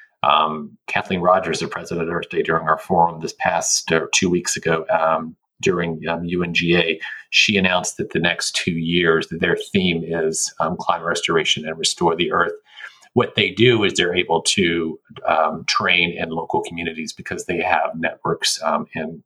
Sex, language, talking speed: male, English, 175 wpm